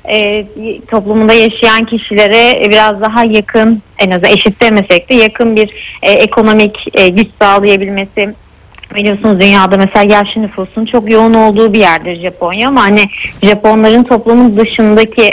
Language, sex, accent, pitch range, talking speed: Turkish, female, native, 205-245 Hz, 135 wpm